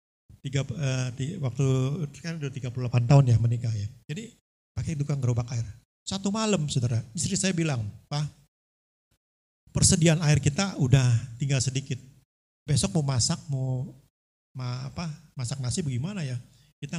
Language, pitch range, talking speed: Indonesian, 120-155 Hz, 140 wpm